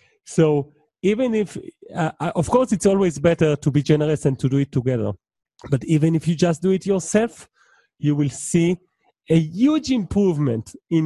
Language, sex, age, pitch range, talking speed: English, male, 30-49, 140-185 Hz, 175 wpm